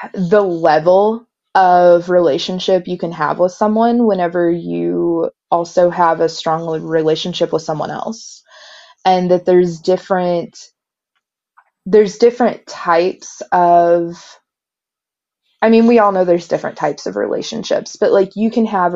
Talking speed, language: 135 wpm, English